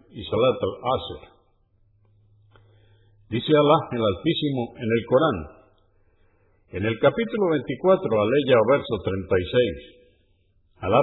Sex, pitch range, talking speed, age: male, 95-150 Hz, 100 wpm, 50-69